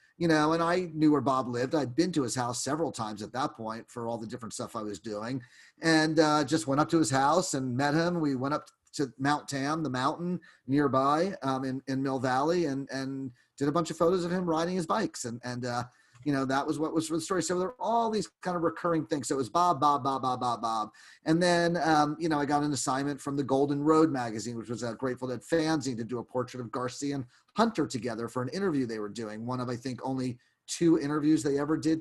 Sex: male